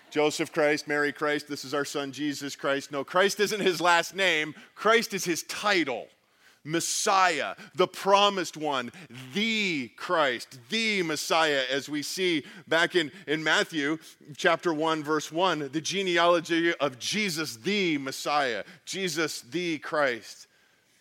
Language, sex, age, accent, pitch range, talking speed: English, male, 40-59, American, 150-195 Hz, 135 wpm